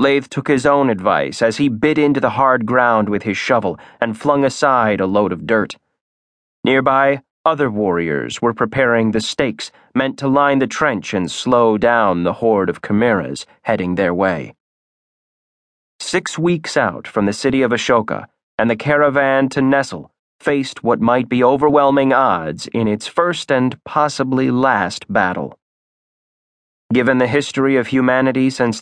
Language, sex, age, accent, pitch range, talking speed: English, male, 30-49, American, 115-140 Hz, 160 wpm